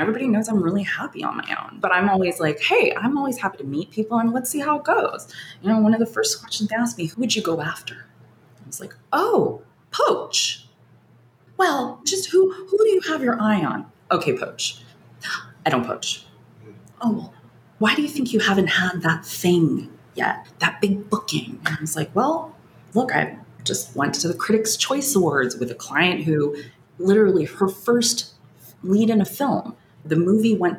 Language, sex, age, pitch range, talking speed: English, female, 20-39, 165-235 Hz, 200 wpm